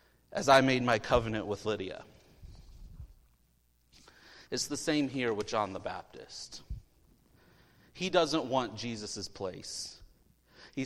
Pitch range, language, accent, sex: 110-160 Hz, English, American, male